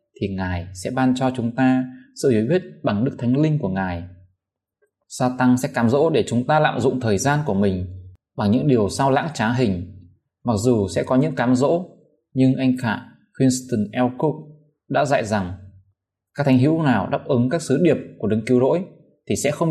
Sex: male